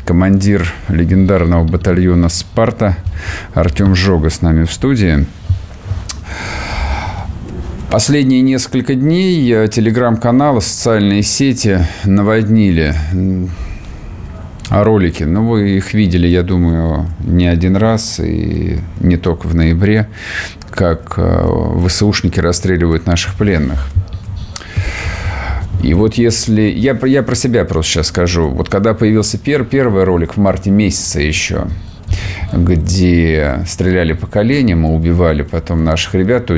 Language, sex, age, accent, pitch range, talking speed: Russian, male, 50-69, native, 85-105 Hz, 110 wpm